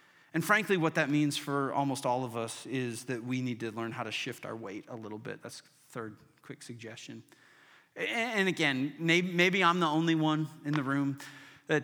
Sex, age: male, 40-59